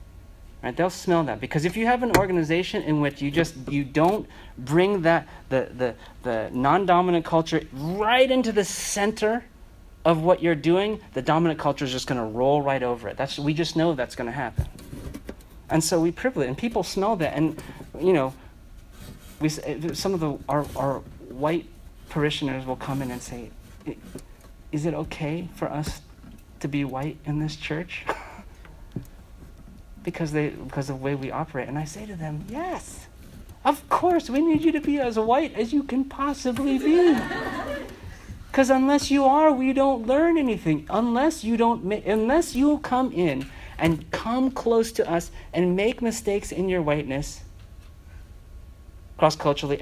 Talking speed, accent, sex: 170 wpm, American, male